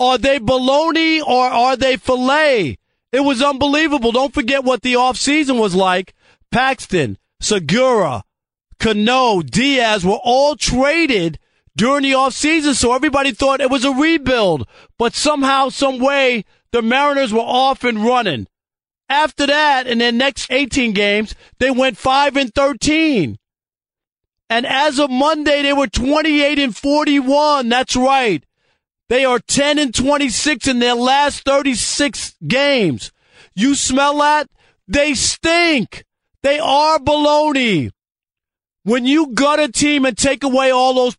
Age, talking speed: 40-59, 140 wpm